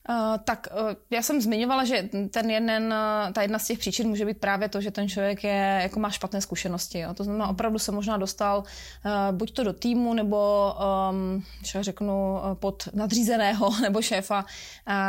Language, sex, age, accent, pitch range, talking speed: Czech, female, 20-39, native, 195-220 Hz, 185 wpm